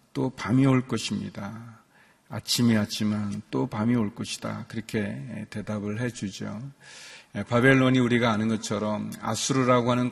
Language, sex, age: Korean, male, 40-59